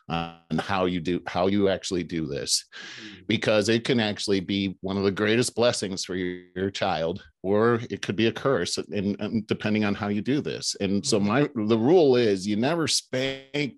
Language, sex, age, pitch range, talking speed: English, male, 40-59, 95-110 Hz, 200 wpm